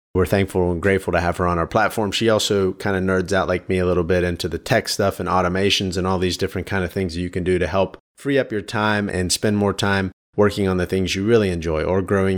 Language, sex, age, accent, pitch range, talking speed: English, male, 30-49, American, 90-100 Hz, 270 wpm